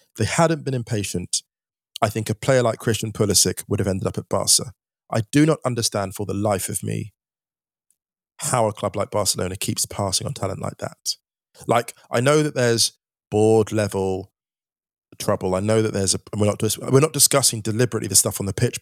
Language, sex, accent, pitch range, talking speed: English, male, British, 105-125 Hz, 200 wpm